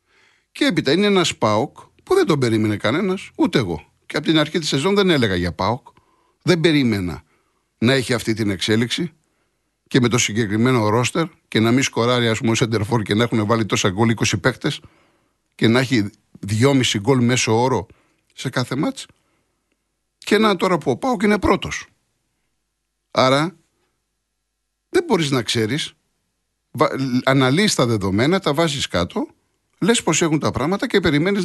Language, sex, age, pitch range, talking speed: Greek, male, 60-79, 110-165 Hz, 165 wpm